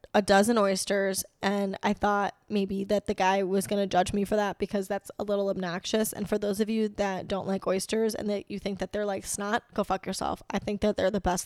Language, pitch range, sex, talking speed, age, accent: English, 195-215 Hz, female, 250 wpm, 10-29, American